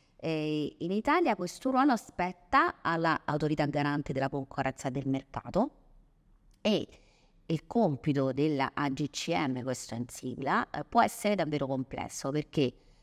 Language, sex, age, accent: Italian, female, 30-49, native